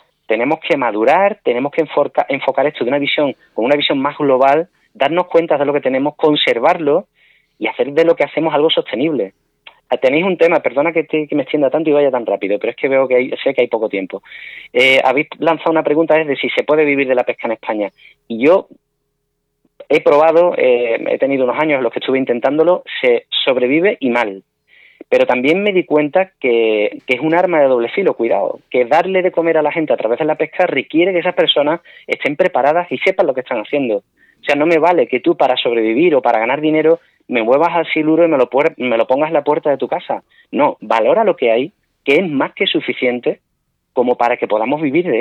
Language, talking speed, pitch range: Spanish, 220 wpm, 135-200 Hz